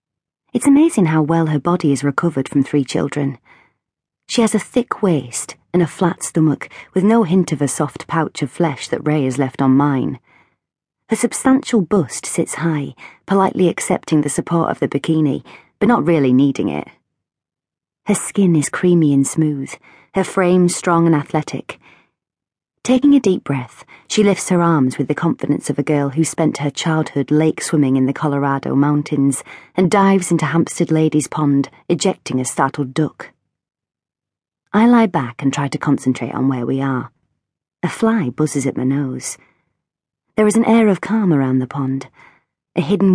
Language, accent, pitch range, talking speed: English, British, 140-180 Hz, 170 wpm